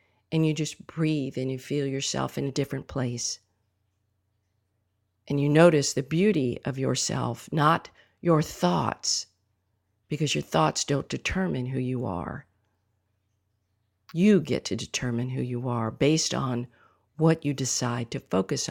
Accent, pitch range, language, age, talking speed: American, 105-155 Hz, English, 50-69, 140 wpm